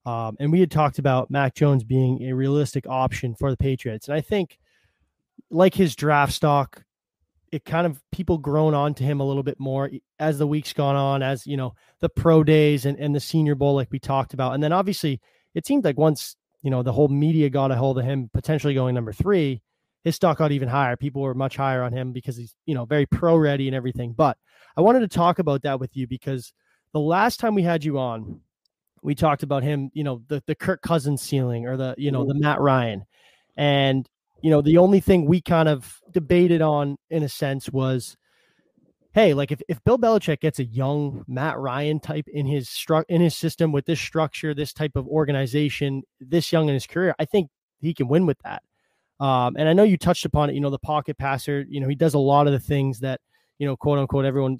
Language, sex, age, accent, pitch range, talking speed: English, male, 20-39, American, 135-155 Hz, 230 wpm